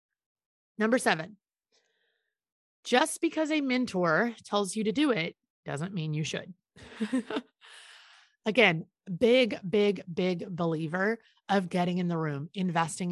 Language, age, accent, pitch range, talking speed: English, 30-49, American, 160-215 Hz, 120 wpm